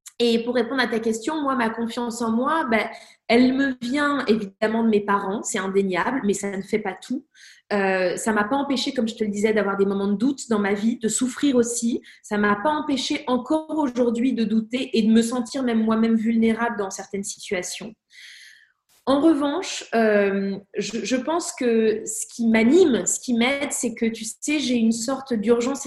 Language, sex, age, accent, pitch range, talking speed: French, female, 20-39, French, 210-265 Hz, 205 wpm